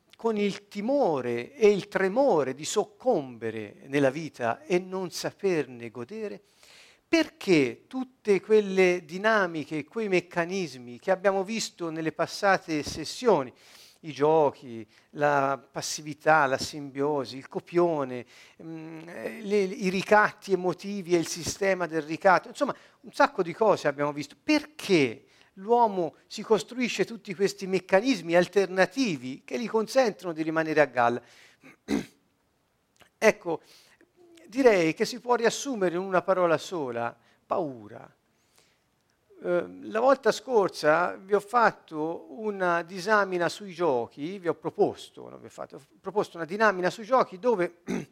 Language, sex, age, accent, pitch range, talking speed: Italian, male, 50-69, native, 150-210 Hz, 125 wpm